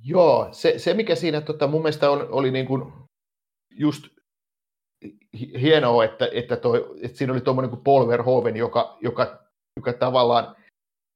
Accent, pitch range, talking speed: native, 120-145 Hz, 145 wpm